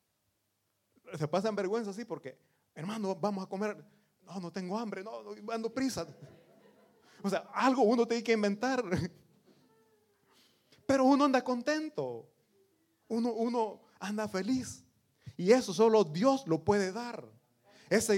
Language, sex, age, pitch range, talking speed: Italian, male, 30-49, 150-220 Hz, 130 wpm